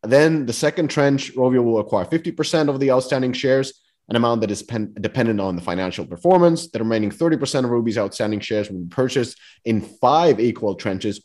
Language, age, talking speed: English, 30-49, 185 wpm